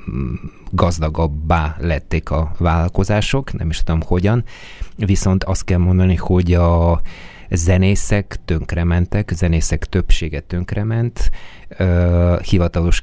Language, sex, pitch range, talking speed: Hungarian, male, 80-90 Hz, 90 wpm